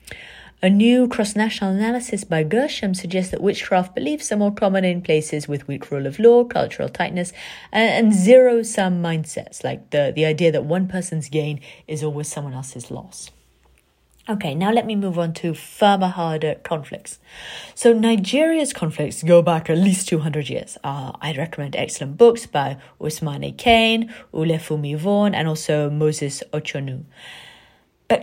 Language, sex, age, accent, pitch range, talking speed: English, female, 30-49, British, 155-220 Hz, 155 wpm